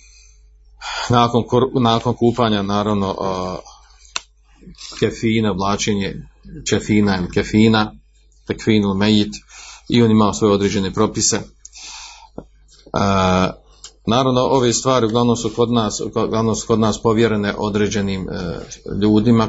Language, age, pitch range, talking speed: Croatian, 50-69, 100-115 Hz, 110 wpm